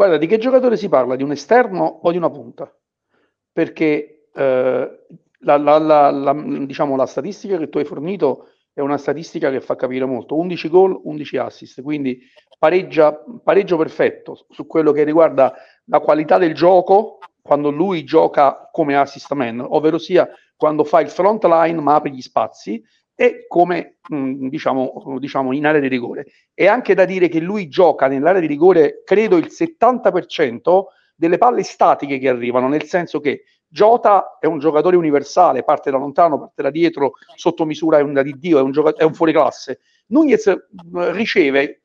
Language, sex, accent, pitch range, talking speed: Italian, male, native, 145-205 Hz, 165 wpm